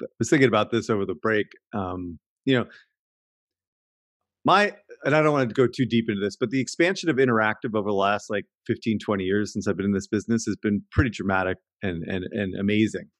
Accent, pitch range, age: American, 105-130 Hz, 30-49